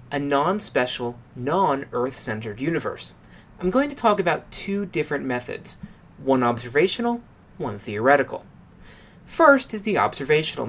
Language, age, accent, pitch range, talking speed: English, 30-49, American, 130-195 Hz, 110 wpm